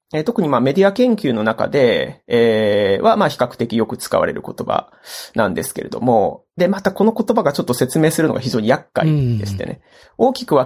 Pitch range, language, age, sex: 130-200 Hz, Japanese, 30-49, male